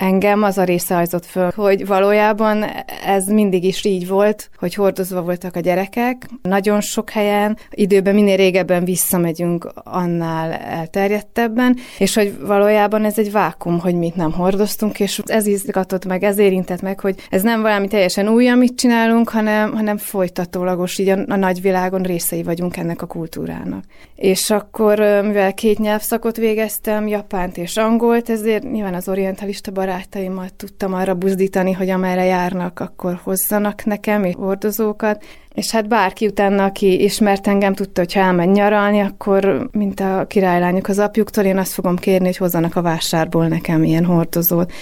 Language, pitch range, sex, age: Hungarian, 180-210 Hz, female, 30-49